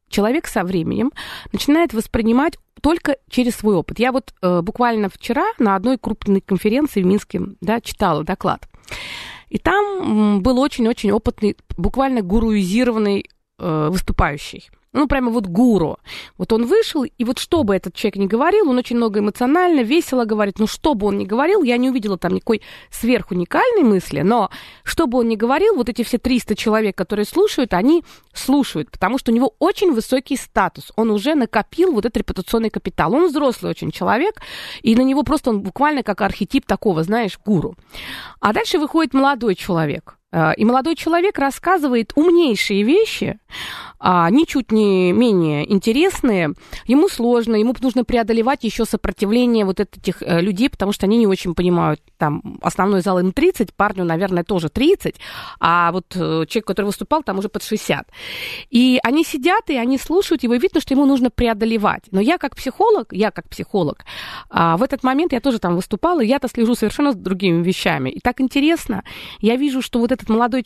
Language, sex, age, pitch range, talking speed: Russian, female, 20-39, 200-275 Hz, 170 wpm